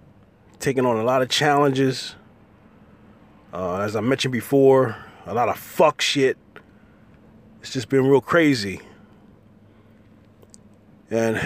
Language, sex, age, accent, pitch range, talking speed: English, male, 30-49, American, 105-130 Hz, 115 wpm